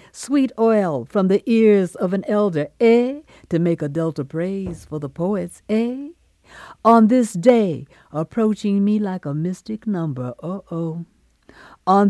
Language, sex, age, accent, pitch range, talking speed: English, female, 60-79, American, 170-220 Hz, 150 wpm